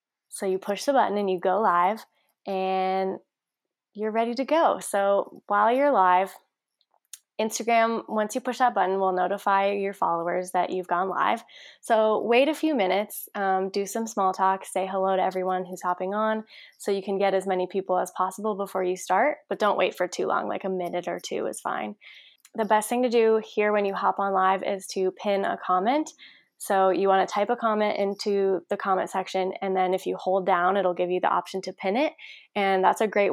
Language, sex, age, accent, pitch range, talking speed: English, female, 10-29, American, 185-220 Hz, 215 wpm